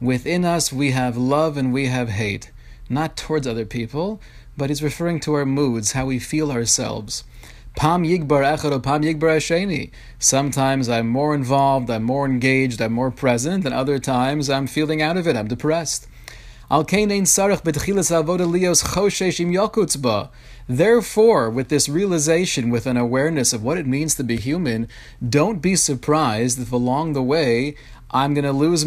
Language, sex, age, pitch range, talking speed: English, male, 30-49, 120-160 Hz, 145 wpm